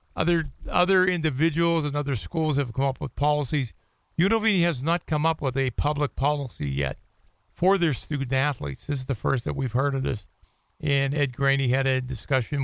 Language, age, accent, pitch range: English, 50-69, American, 130-155 Hz